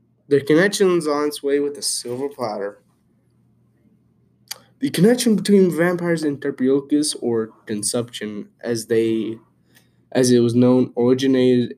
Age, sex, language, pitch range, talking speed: 10-29, male, English, 110-130 Hz, 125 wpm